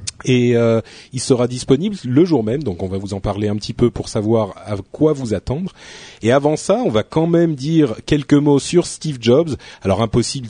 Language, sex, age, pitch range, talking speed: French, male, 30-49, 110-140 Hz, 215 wpm